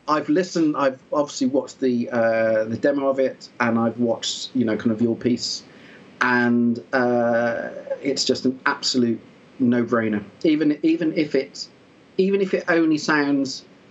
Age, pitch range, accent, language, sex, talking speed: 40-59, 115-150 Hz, British, English, male, 155 wpm